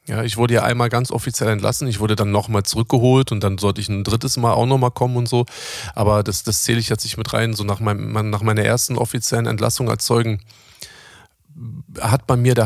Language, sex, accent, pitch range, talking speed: German, male, German, 105-125 Hz, 225 wpm